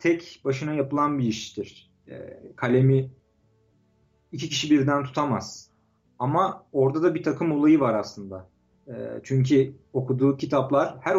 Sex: male